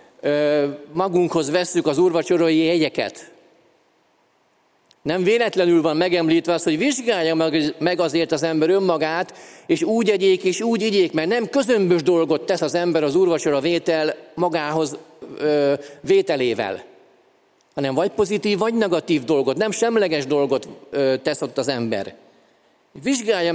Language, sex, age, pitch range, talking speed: Hungarian, male, 40-59, 145-190 Hz, 120 wpm